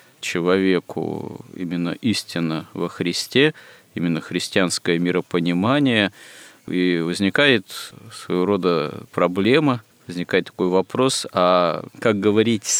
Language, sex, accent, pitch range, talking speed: Russian, male, native, 90-105 Hz, 90 wpm